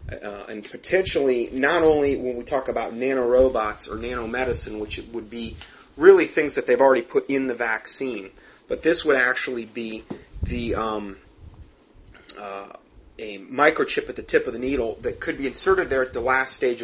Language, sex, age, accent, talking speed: English, male, 30-49, American, 175 wpm